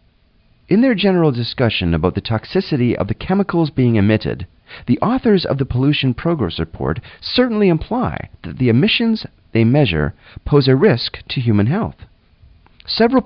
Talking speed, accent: 150 wpm, American